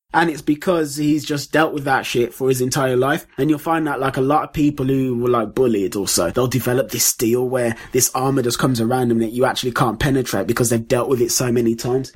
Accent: British